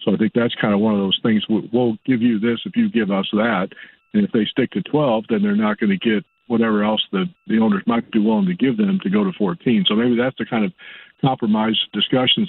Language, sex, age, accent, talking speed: English, male, 50-69, American, 260 wpm